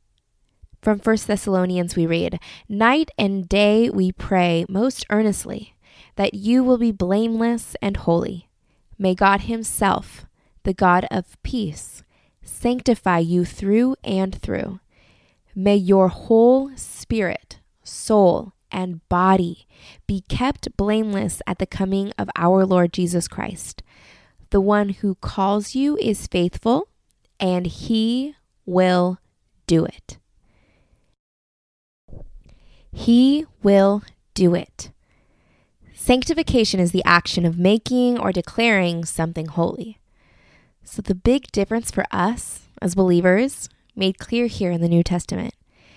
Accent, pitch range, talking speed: American, 180-225 Hz, 115 wpm